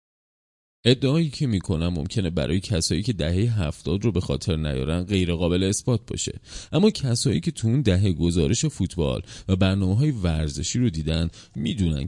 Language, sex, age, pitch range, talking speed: Persian, male, 30-49, 85-115 Hz, 155 wpm